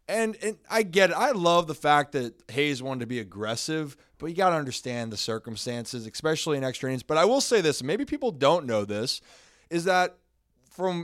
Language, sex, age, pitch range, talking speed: English, male, 20-39, 130-165 Hz, 210 wpm